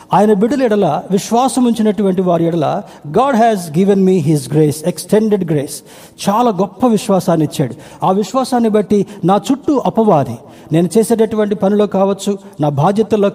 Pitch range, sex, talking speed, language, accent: 165-215 Hz, male, 140 wpm, Telugu, native